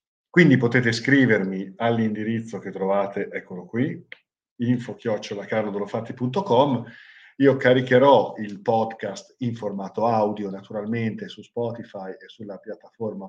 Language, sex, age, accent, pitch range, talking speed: Italian, male, 40-59, native, 100-120 Hz, 100 wpm